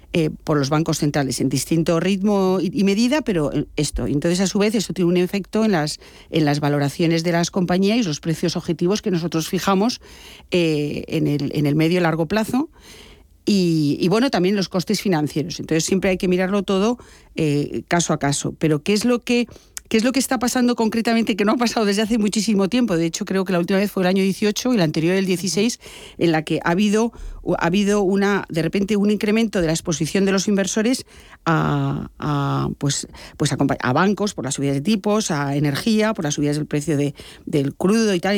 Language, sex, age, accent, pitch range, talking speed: Spanish, female, 40-59, Spanish, 160-210 Hz, 215 wpm